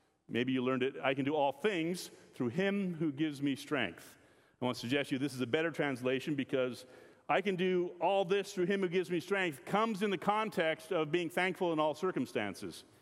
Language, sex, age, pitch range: English, male, 40-59, 135-190 Hz